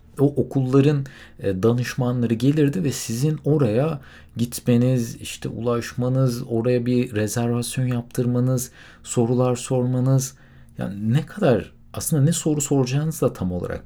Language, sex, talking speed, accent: Turkish, male, 115 wpm, native